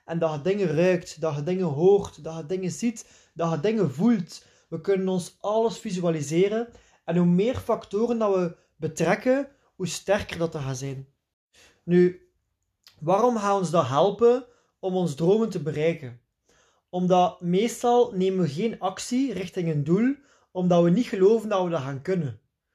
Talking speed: 170 wpm